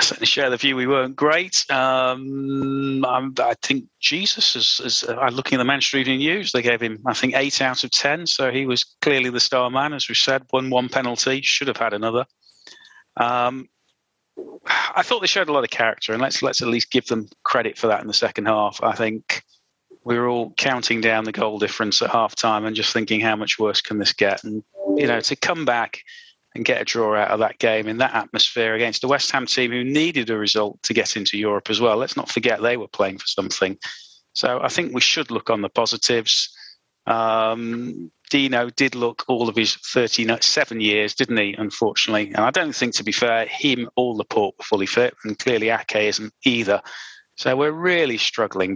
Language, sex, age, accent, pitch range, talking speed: English, male, 30-49, British, 110-135 Hz, 215 wpm